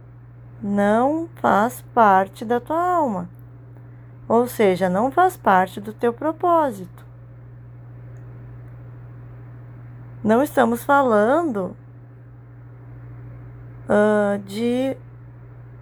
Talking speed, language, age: 70 wpm, Portuguese, 20-39